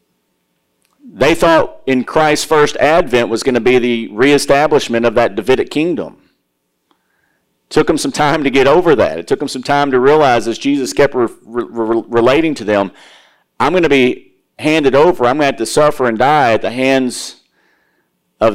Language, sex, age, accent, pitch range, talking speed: English, male, 40-59, American, 110-150 Hz, 180 wpm